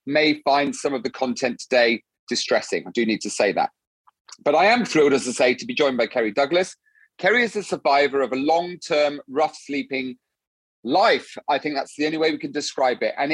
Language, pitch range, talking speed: English, 130-175 Hz, 215 wpm